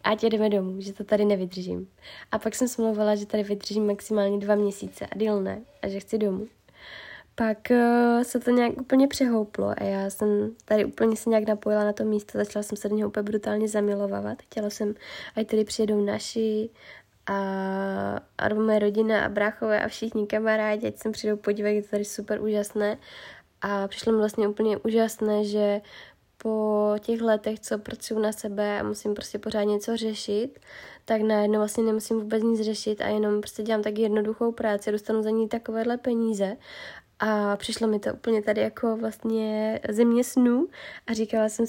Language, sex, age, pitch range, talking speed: Czech, female, 20-39, 205-225 Hz, 185 wpm